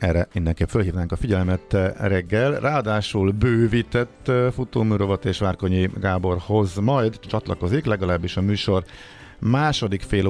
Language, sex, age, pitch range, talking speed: Hungarian, male, 50-69, 90-110 Hz, 110 wpm